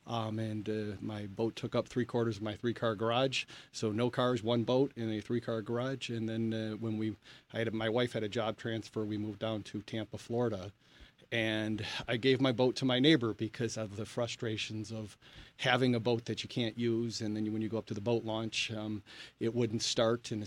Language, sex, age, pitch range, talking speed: English, male, 40-59, 110-125 Hz, 230 wpm